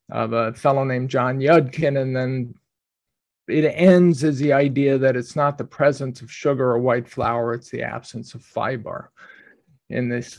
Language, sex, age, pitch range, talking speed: English, male, 50-69, 125-155 Hz, 175 wpm